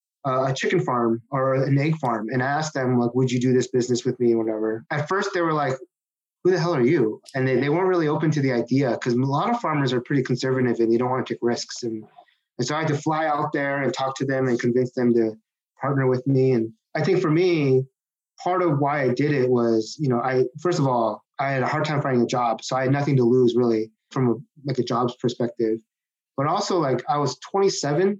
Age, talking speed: 30-49, 255 wpm